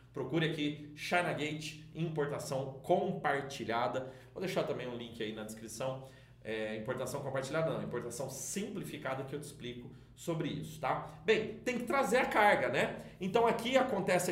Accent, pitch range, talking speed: Brazilian, 130-180 Hz, 155 wpm